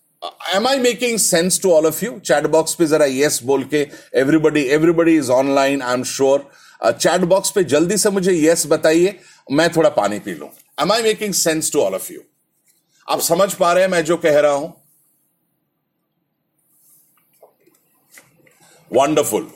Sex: male